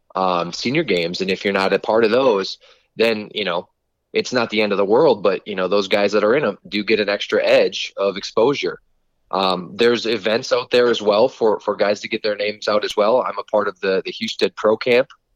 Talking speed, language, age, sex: 245 wpm, English, 20-39, male